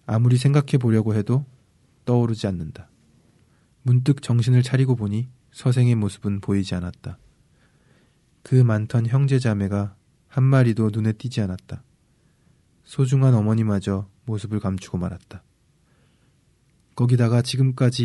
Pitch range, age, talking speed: 105-130 Hz, 20-39, 100 wpm